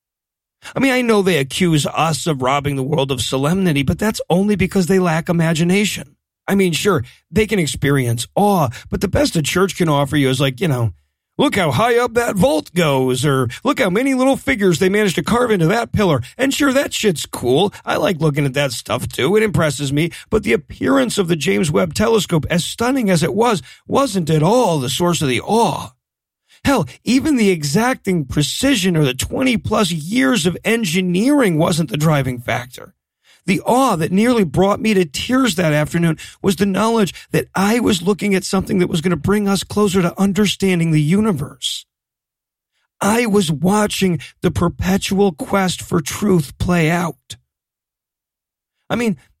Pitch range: 155-210 Hz